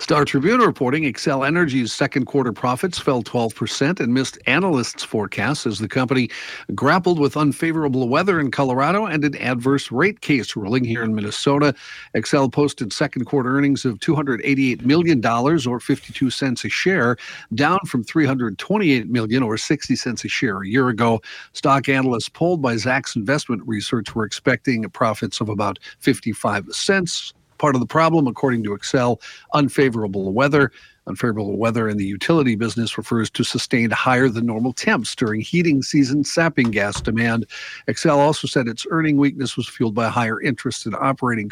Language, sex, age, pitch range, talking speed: English, male, 50-69, 115-145 Hz, 160 wpm